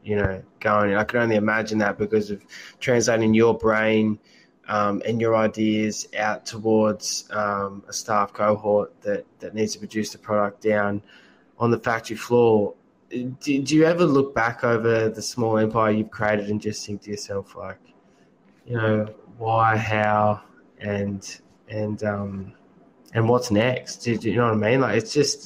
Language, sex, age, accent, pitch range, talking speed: English, male, 20-39, Australian, 105-120 Hz, 175 wpm